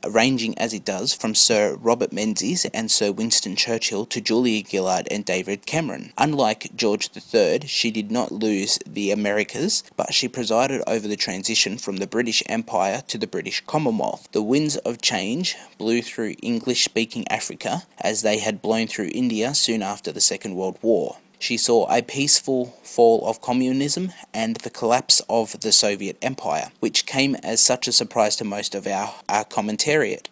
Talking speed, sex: 170 wpm, male